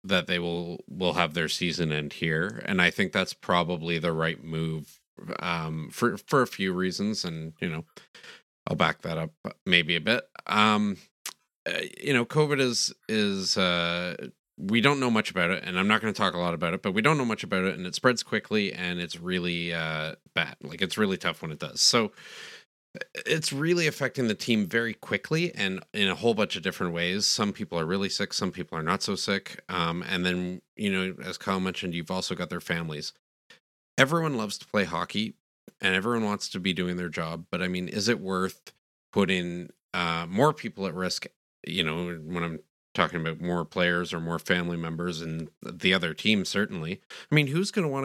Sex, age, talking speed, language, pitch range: male, 30-49, 210 wpm, English, 85-110 Hz